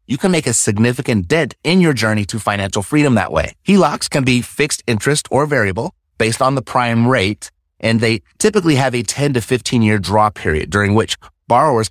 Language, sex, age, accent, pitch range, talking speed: English, male, 30-49, American, 100-135 Hz, 195 wpm